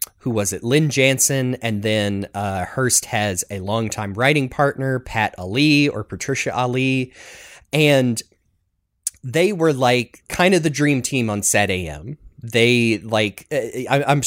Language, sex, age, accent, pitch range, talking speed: English, male, 30-49, American, 100-140 Hz, 145 wpm